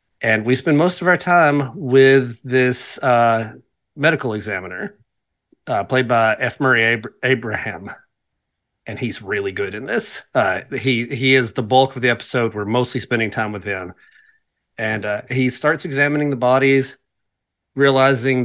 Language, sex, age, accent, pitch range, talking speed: English, male, 30-49, American, 115-135 Hz, 155 wpm